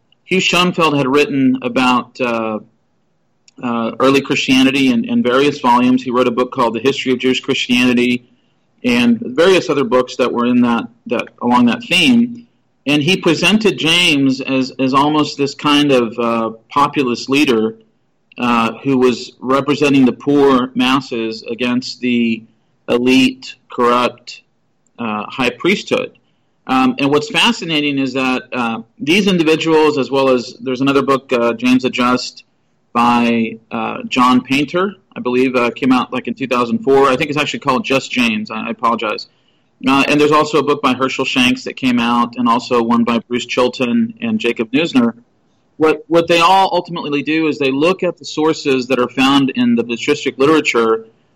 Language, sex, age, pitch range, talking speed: English, male, 40-59, 125-150 Hz, 165 wpm